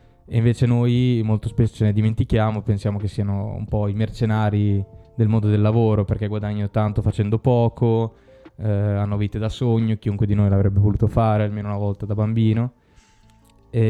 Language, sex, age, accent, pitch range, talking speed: Italian, male, 20-39, native, 105-115 Hz, 175 wpm